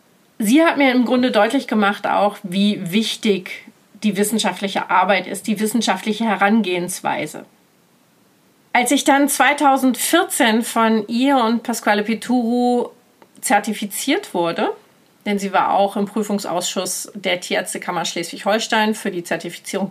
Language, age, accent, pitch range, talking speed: German, 40-59, German, 200-235 Hz, 120 wpm